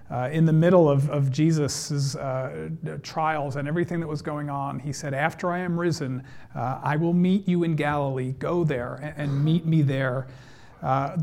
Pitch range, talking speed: 145-185 Hz, 195 wpm